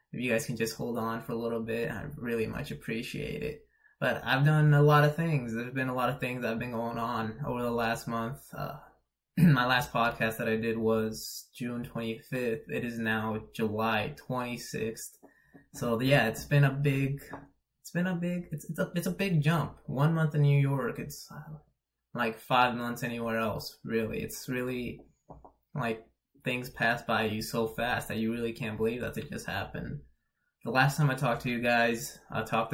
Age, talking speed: 20-39, 200 wpm